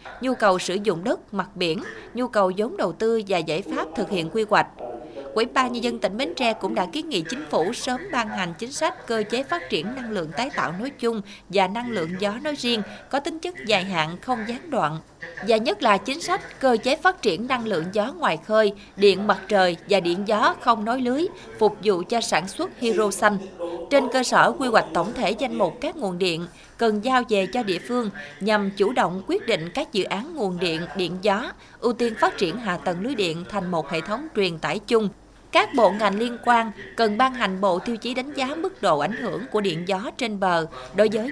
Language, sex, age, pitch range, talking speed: Vietnamese, female, 20-39, 185-245 Hz, 230 wpm